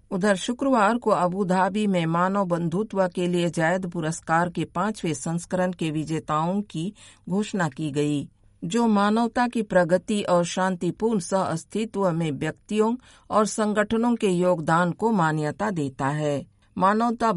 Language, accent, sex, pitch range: Hindi, native, female, 165-200 Hz